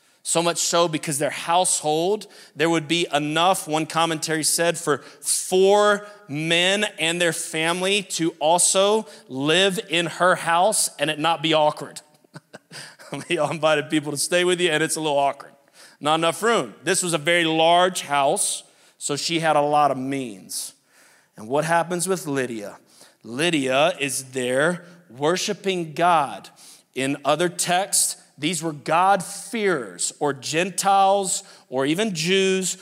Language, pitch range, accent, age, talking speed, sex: English, 145-180 Hz, American, 30-49, 145 wpm, male